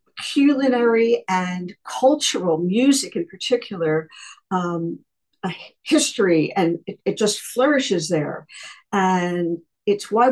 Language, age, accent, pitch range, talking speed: English, 50-69, American, 165-225 Hz, 105 wpm